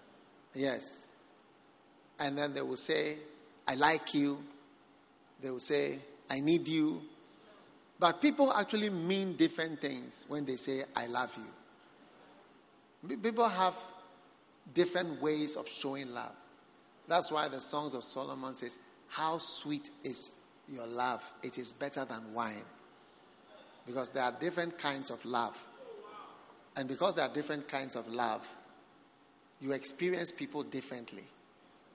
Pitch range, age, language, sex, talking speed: 130-170 Hz, 50-69, English, male, 130 wpm